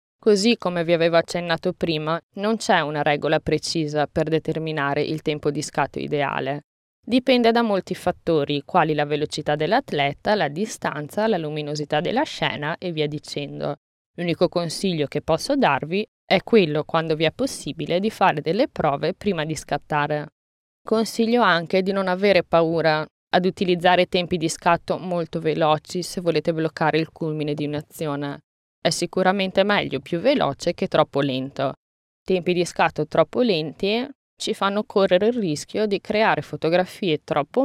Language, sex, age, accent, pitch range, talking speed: Italian, female, 20-39, native, 150-200 Hz, 150 wpm